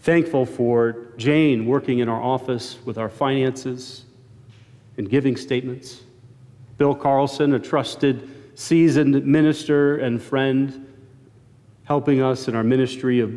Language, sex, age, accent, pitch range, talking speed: English, male, 40-59, American, 120-145 Hz, 120 wpm